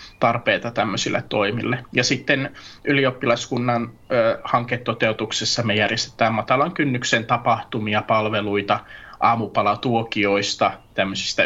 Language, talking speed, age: Finnish, 85 wpm, 20-39